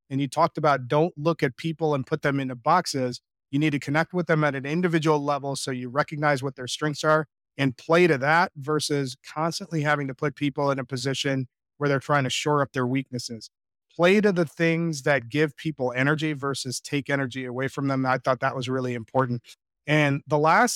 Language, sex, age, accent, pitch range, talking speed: English, male, 30-49, American, 135-160 Hz, 215 wpm